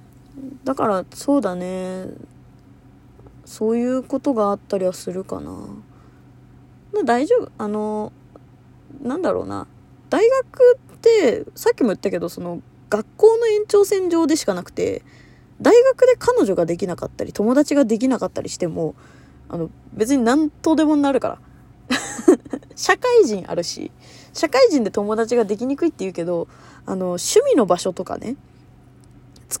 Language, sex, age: Japanese, female, 20-39